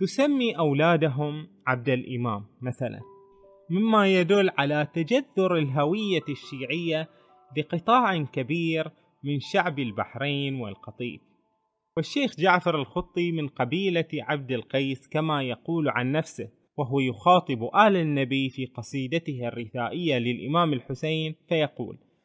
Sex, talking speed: male, 100 wpm